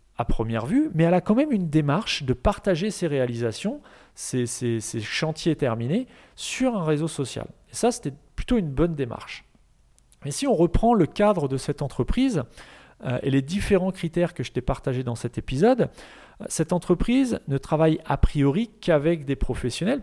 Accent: French